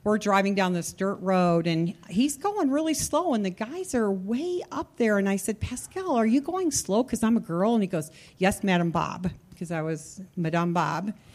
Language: English